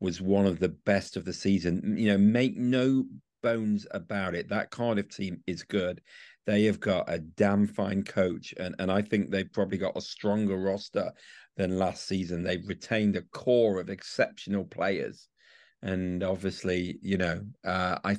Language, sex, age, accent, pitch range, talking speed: English, male, 40-59, British, 95-110 Hz, 175 wpm